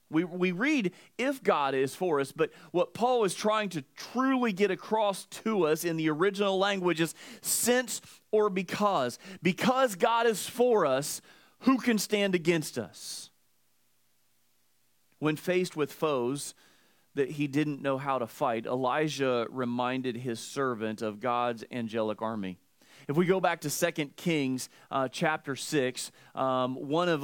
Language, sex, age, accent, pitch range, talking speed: English, male, 40-59, American, 120-170 Hz, 150 wpm